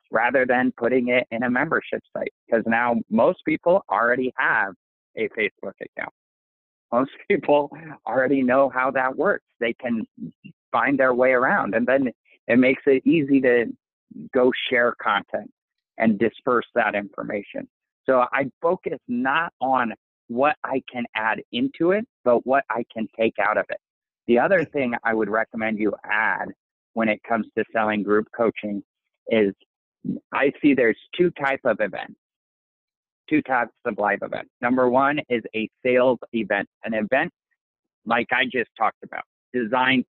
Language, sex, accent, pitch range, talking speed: English, male, American, 115-150 Hz, 155 wpm